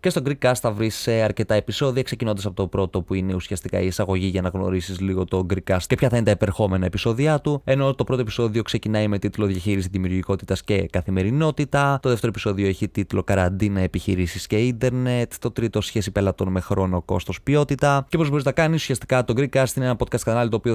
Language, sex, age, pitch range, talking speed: Greek, male, 20-39, 100-125 Hz, 220 wpm